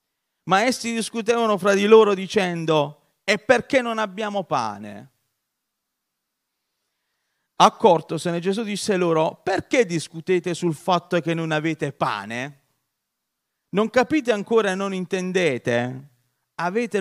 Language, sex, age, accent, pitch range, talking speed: Italian, male, 40-59, native, 145-200 Hz, 110 wpm